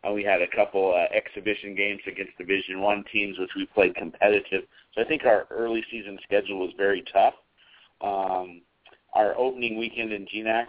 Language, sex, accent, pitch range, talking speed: English, male, American, 100-115 Hz, 180 wpm